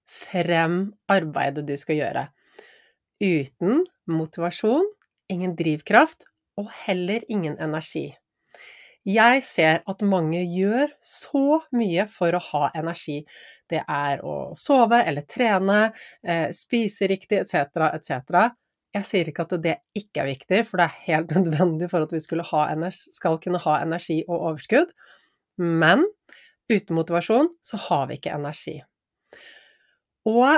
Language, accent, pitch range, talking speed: English, Swedish, 165-230 Hz, 135 wpm